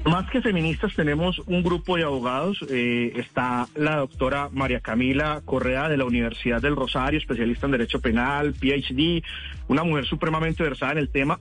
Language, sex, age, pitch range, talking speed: Spanish, male, 40-59, 140-180 Hz, 170 wpm